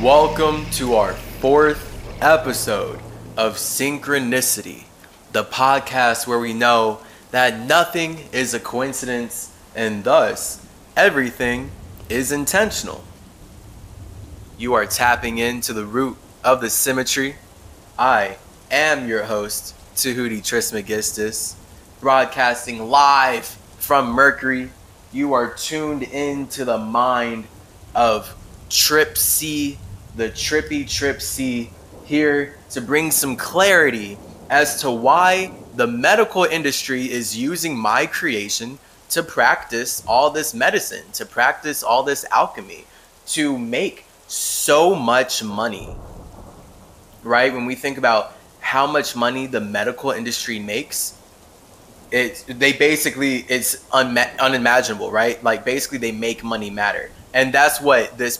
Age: 20-39